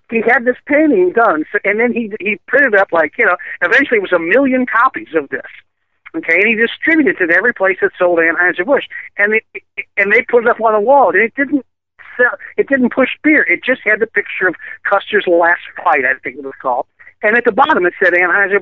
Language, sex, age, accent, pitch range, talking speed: English, male, 60-79, American, 180-265 Hz, 240 wpm